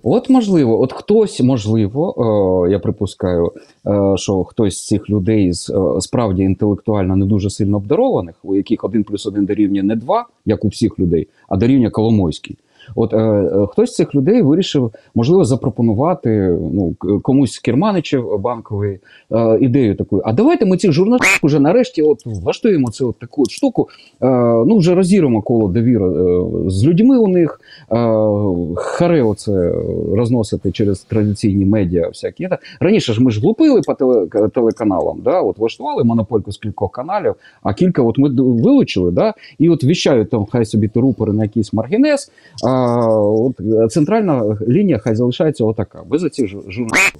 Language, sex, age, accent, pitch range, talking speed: Ukrainian, male, 30-49, native, 105-140 Hz, 165 wpm